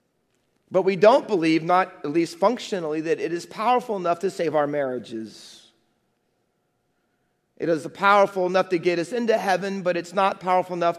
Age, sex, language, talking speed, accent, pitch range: 40-59, male, English, 170 wpm, American, 145-195 Hz